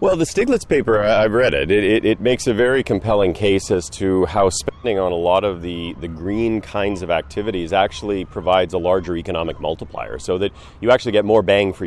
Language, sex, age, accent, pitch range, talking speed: English, male, 40-59, American, 90-115 Hz, 215 wpm